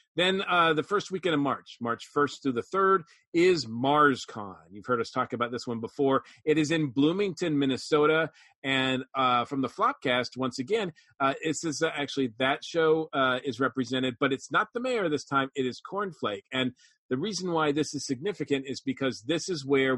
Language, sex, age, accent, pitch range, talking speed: English, male, 40-59, American, 130-170 Hz, 200 wpm